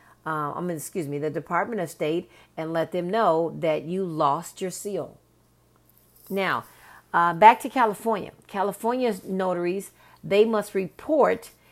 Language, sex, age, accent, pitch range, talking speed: English, female, 40-59, American, 165-205 Hz, 145 wpm